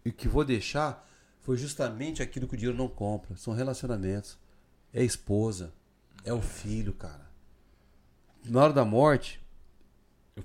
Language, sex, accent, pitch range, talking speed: Portuguese, male, Brazilian, 100-135 Hz, 155 wpm